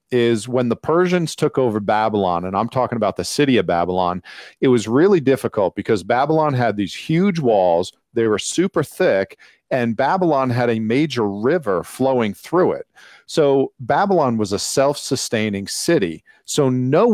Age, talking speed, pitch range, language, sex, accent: 40-59, 160 wpm, 110-135 Hz, English, male, American